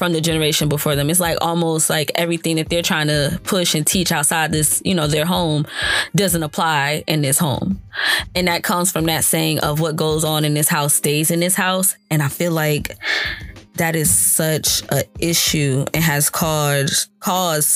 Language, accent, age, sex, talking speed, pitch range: English, American, 10-29, female, 195 wpm, 150-170 Hz